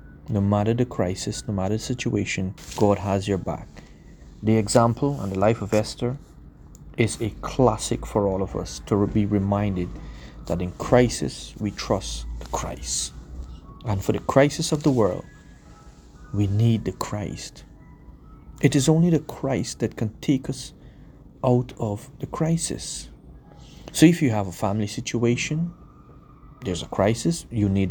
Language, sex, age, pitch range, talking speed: English, male, 30-49, 95-125 Hz, 155 wpm